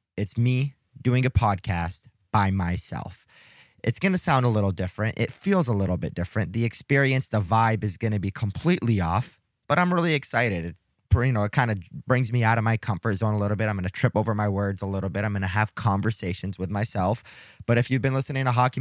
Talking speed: 230 wpm